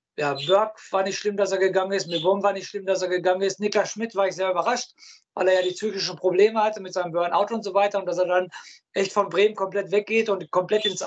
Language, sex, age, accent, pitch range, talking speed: German, male, 50-69, German, 185-210 Hz, 260 wpm